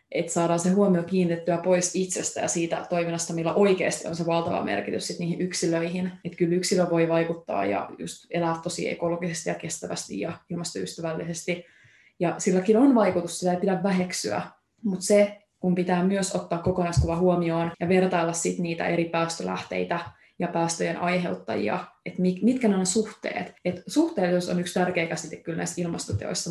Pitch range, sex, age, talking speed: 165-185 Hz, female, 20-39, 165 wpm